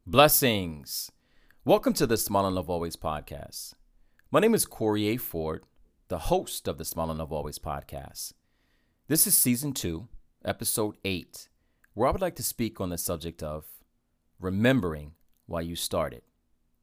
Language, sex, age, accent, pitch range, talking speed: English, male, 40-59, American, 80-125 Hz, 155 wpm